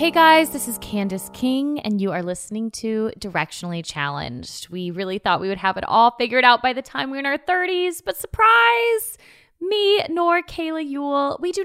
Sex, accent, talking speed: female, American, 200 wpm